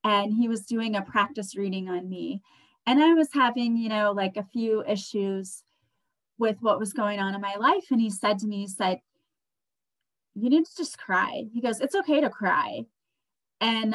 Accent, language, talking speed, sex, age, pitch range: American, English, 200 wpm, female, 30-49, 200-240 Hz